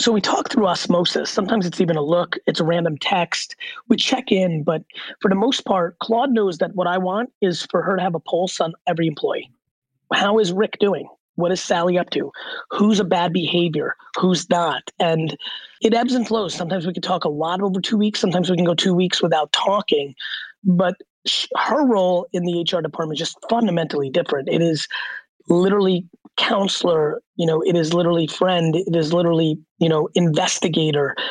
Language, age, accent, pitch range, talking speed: English, 30-49, American, 165-205 Hz, 195 wpm